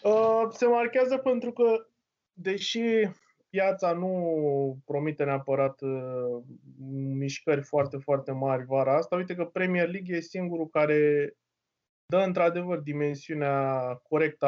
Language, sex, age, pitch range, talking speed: Romanian, male, 20-39, 140-175 Hz, 110 wpm